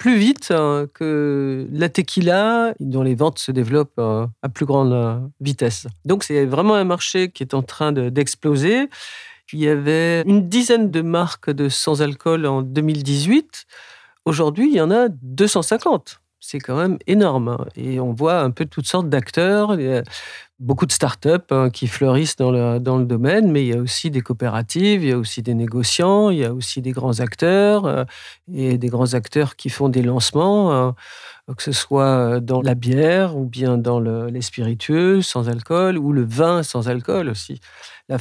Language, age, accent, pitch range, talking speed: French, 50-69, French, 125-165 Hz, 180 wpm